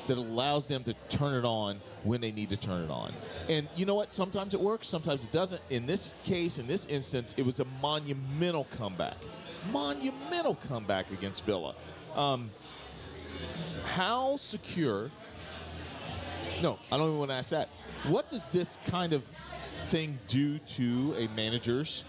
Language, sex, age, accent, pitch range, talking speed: English, male, 40-59, American, 120-180 Hz, 160 wpm